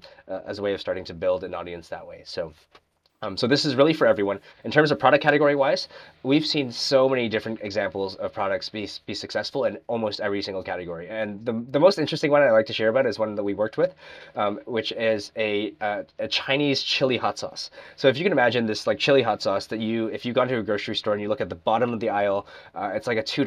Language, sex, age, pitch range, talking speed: English, male, 20-39, 105-135 Hz, 260 wpm